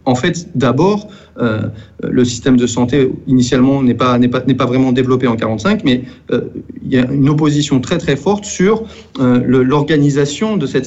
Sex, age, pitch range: male, 40-59, 120-145 Hz